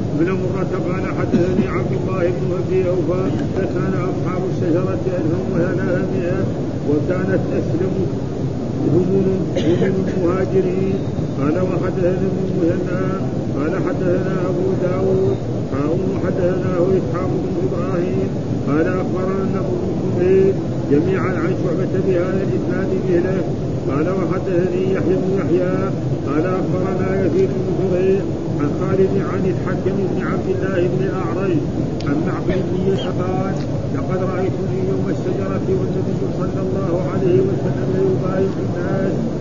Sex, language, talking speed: male, Arabic, 115 wpm